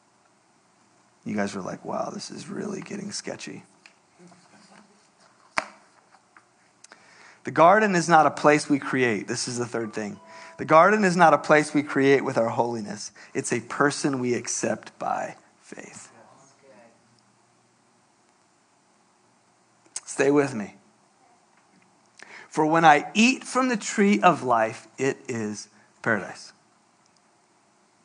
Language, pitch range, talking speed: English, 135-200 Hz, 120 wpm